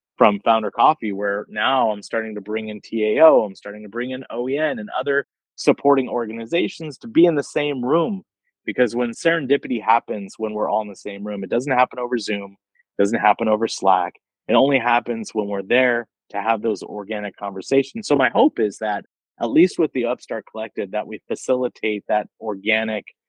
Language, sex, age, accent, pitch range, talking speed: English, male, 30-49, American, 105-130 Hz, 190 wpm